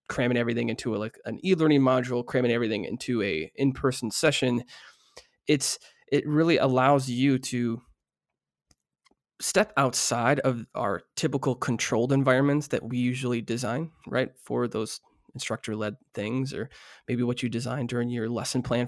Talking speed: 145 wpm